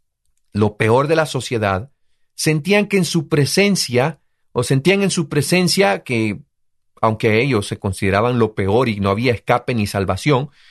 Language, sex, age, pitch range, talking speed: Spanish, male, 40-59, 140-220 Hz, 155 wpm